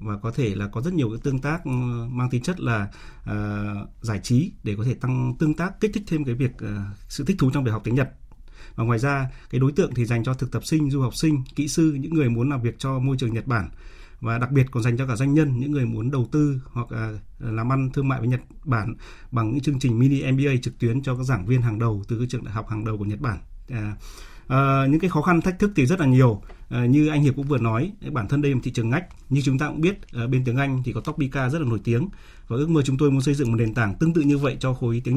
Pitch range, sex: 115-145 Hz, male